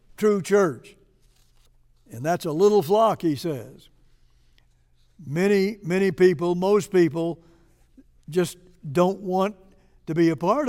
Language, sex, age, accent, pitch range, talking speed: English, male, 60-79, American, 135-195 Hz, 120 wpm